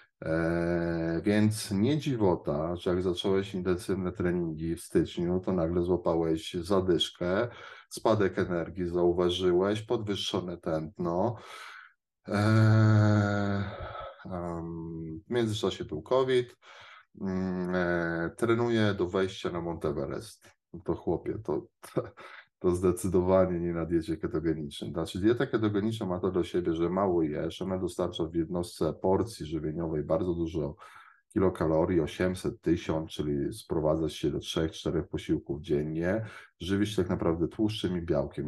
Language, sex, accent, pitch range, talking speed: Polish, male, native, 85-100 Hz, 120 wpm